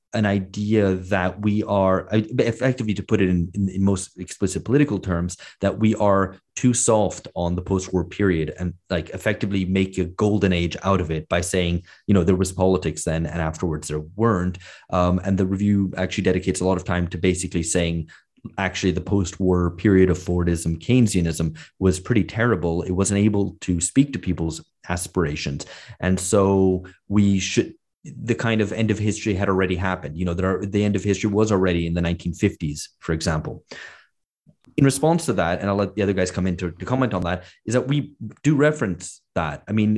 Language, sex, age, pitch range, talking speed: English, male, 30-49, 90-100 Hz, 195 wpm